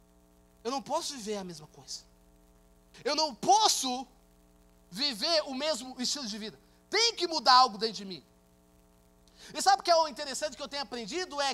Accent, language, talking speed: Brazilian, Portuguese, 180 wpm